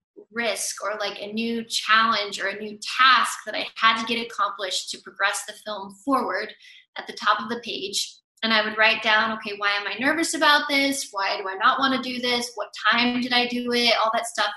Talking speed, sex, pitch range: 230 wpm, female, 210-260 Hz